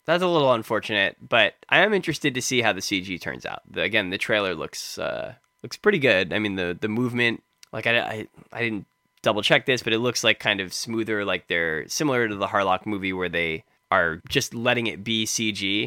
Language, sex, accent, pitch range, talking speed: English, male, American, 90-125 Hz, 225 wpm